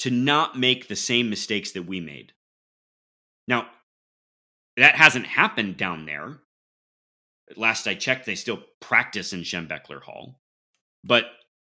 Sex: male